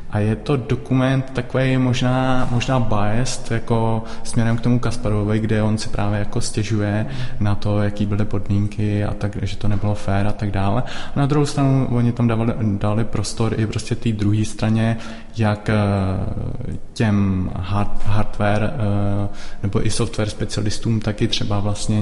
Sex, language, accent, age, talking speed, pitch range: male, Czech, native, 20-39, 155 wpm, 105-115 Hz